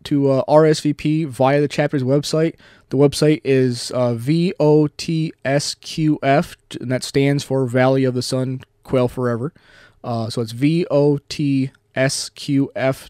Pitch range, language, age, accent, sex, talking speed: 125-150 Hz, English, 20-39, American, male, 120 wpm